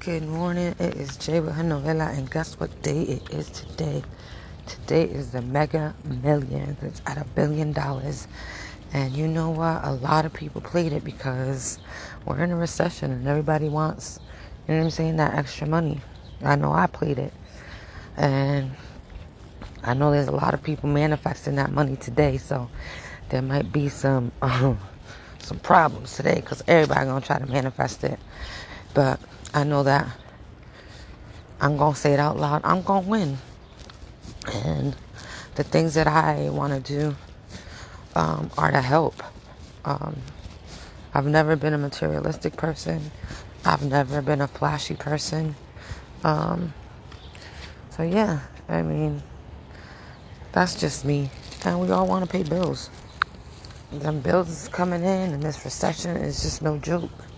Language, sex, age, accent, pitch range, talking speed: English, female, 30-49, American, 95-155 Hz, 155 wpm